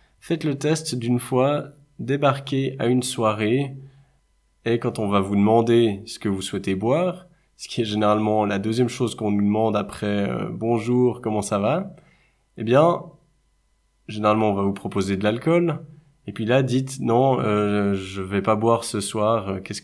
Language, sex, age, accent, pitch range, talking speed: French, male, 20-39, French, 100-120 Hz, 185 wpm